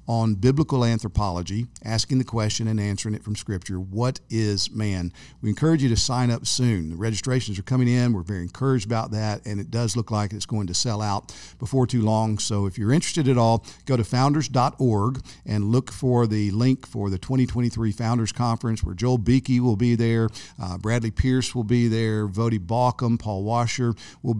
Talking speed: 195 wpm